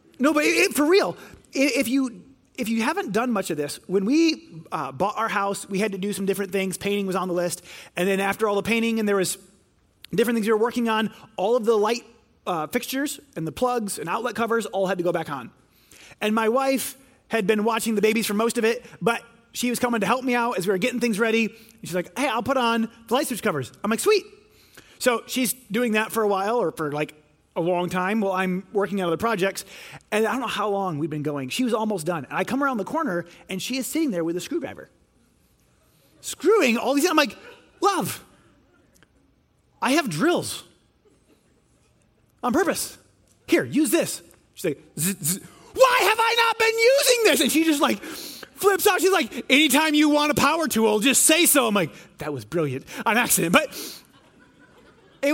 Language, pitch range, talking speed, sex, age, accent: English, 195-270 Hz, 220 wpm, male, 30-49, American